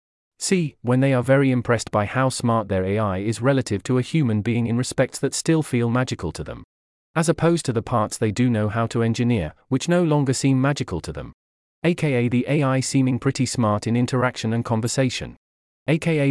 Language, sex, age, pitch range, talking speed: English, male, 30-49, 110-135 Hz, 200 wpm